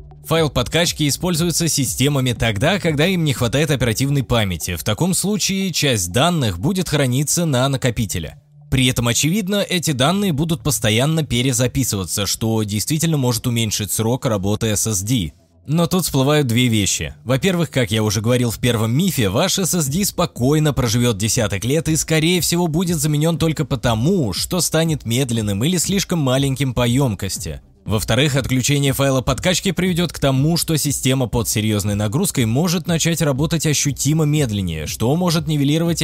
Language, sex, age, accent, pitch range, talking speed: Russian, male, 20-39, native, 110-155 Hz, 150 wpm